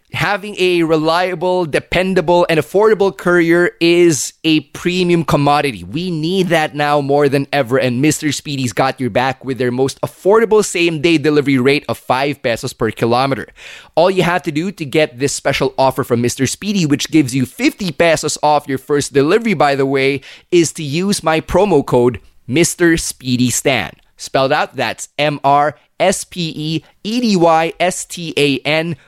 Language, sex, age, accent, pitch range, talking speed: English, male, 20-39, Filipino, 130-170 Hz, 150 wpm